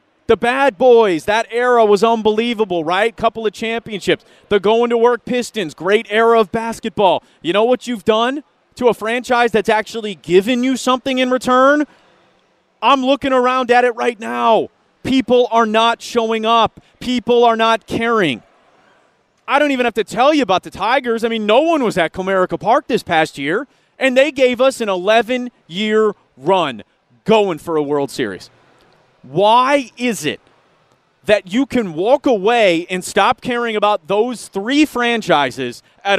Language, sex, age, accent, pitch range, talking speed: English, male, 30-49, American, 185-240 Hz, 160 wpm